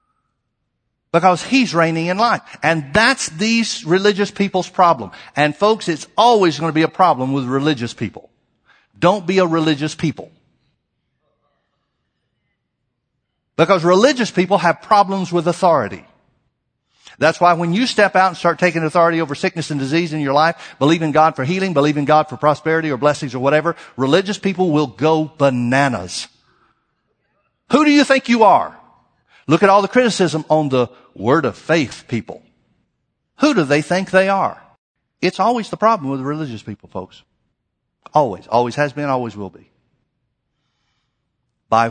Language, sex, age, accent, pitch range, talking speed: English, male, 50-69, American, 130-185 Hz, 155 wpm